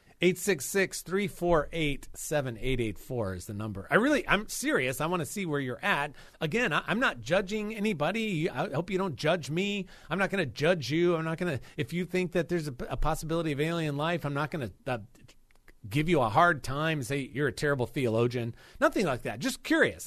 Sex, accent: male, American